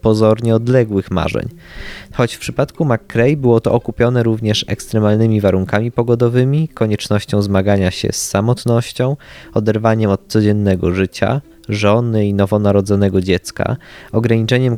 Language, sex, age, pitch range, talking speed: Polish, male, 20-39, 100-120 Hz, 115 wpm